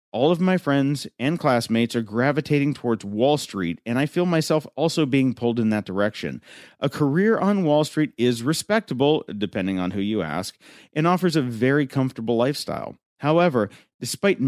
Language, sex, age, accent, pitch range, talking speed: English, male, 40-59, American, 110-155 Hz, 170 wpm